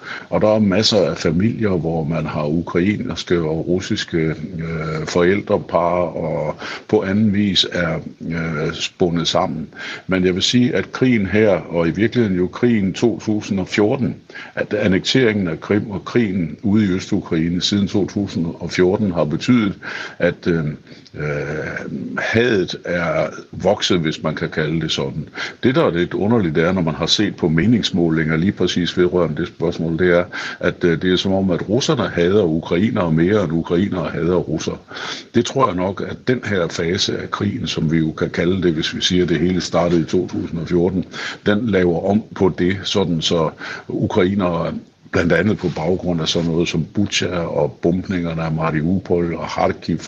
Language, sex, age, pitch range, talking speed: Danish, male, 60-79, 80-95 Hz, 170 wpm